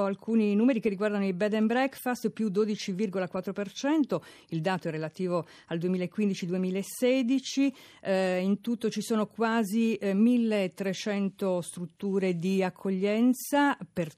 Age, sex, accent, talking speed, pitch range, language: 50-69, female, native, 115 wpm, 180-220 Hz, Italian